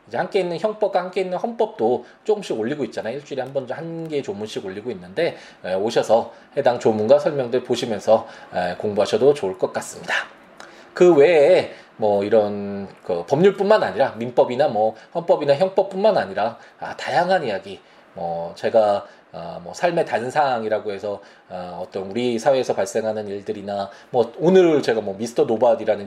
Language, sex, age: Korean, male, 20-39